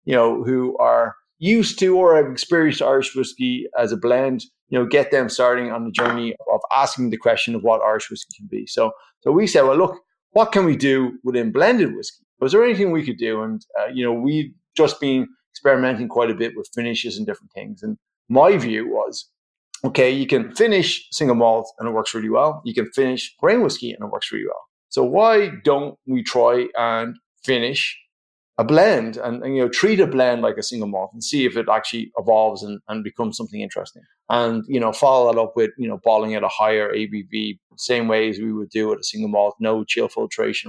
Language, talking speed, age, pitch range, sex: English, 220 wpm, 30-49, 115-155 Hz, male